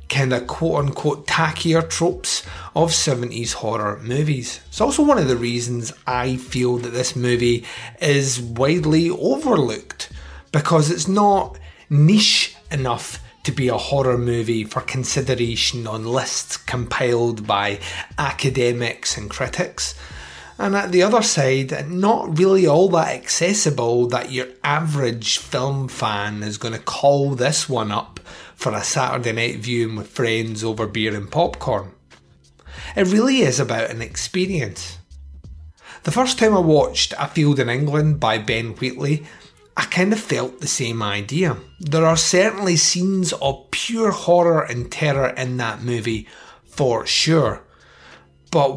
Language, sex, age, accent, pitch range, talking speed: English, male, 30-49, British, 115-155 Hz, 140 wpm